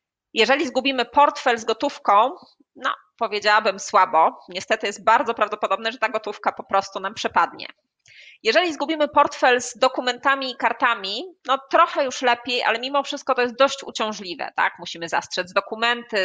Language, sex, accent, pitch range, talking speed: Polish, female, native, 200-265 Hz, 150 wpm